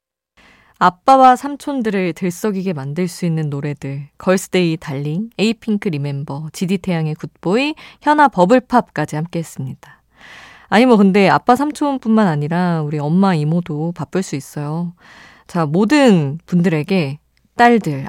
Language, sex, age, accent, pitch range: Korean, female, 20-39, native, 160-240 Hz